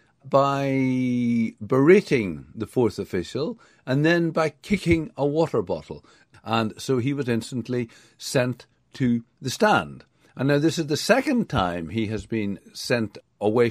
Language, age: English, 50-69